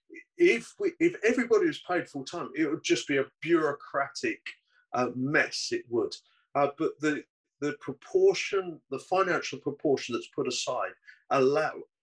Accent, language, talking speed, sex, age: British, English, 150 wpm, male, 40-59